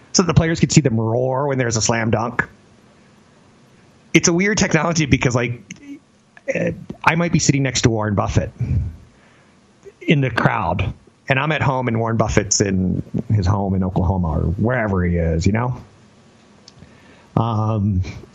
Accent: American